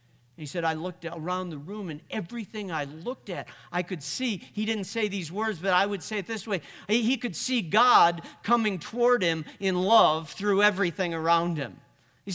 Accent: American